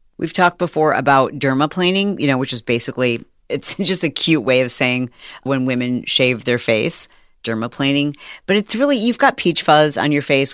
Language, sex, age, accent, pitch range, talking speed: English, female, 40-59, American, 135-175 Hz, 190 wpm